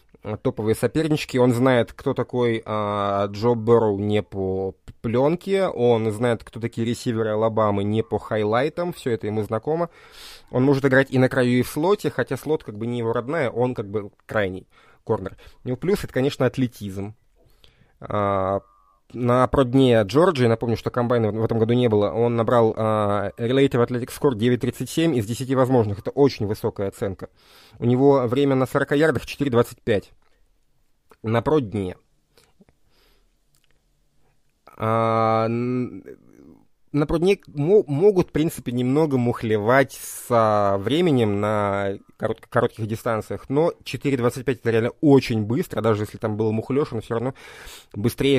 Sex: male